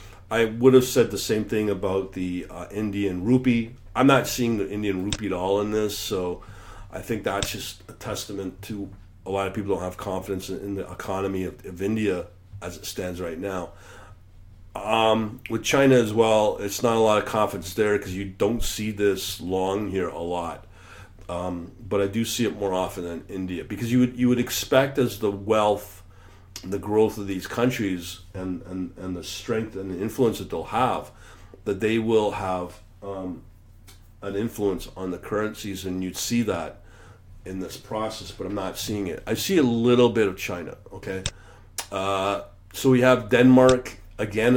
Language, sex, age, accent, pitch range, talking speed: English, male, 40-59, American, 95-110 Hz, 190 wpm